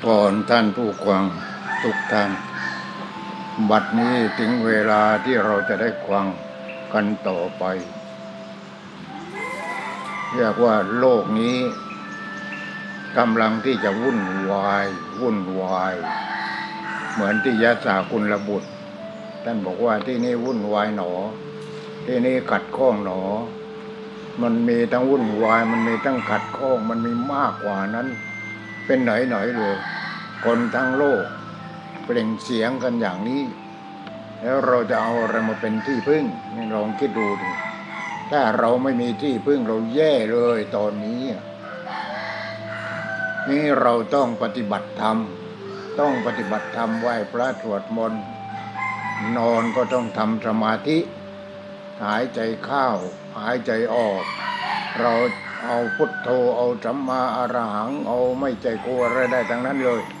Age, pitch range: 60-79, 110-130 Hz